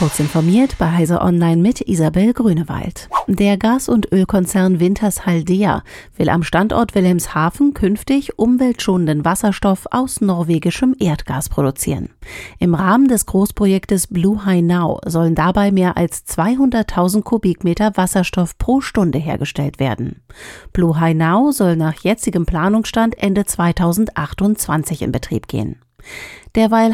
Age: 40-59